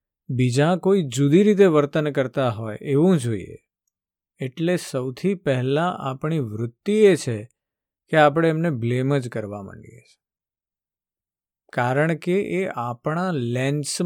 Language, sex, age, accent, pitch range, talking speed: Gujarati, male, 50-69, native, 120-165 Hz, 90 wpm